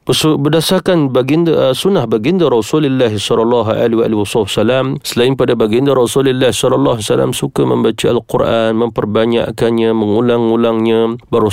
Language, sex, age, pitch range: Malay, male, 40-59, 105-125 Hz